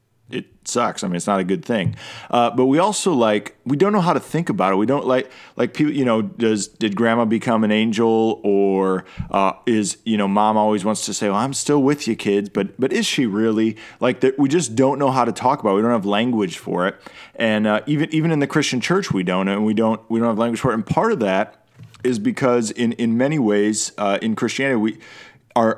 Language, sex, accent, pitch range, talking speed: English, male, American, 100-120 Hz, 250 wpm